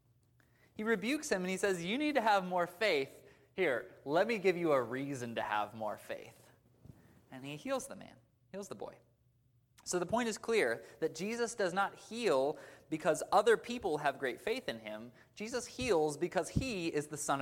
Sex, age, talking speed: male, 20-39, 195 wpm